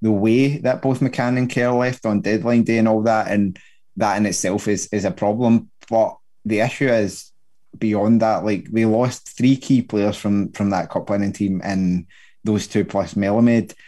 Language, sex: English, male